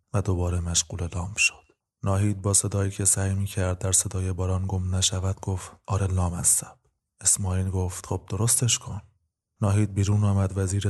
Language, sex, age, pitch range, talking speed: Persian, male, 20-39, 95-105 Hz, 160 wpm